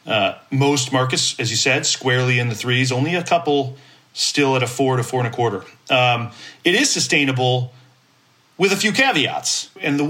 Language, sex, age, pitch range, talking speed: English, male, 40-59, 125-160 Hz, 190 wpm